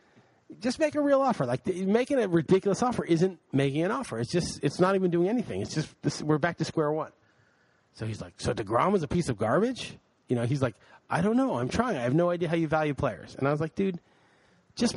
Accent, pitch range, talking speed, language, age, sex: American, 125-195 Hz, 255 wpm, English, 30-49, male